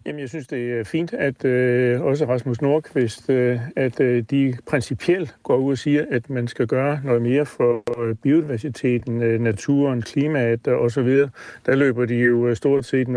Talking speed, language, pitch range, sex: 185 wpm, Danish, 120-145 Hz, male